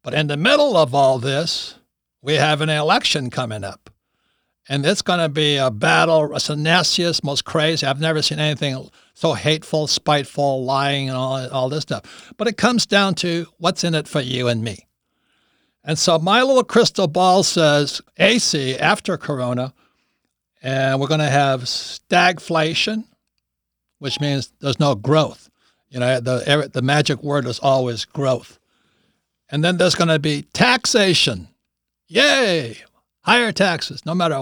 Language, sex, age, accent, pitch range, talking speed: English, male, 60-79, American, 135-170 Hz, 155 wpm